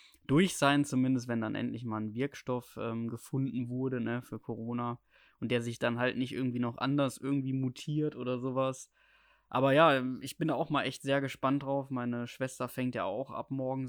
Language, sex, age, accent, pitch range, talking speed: German, male, 20-39, German, 120-140 Hz, 195 wpm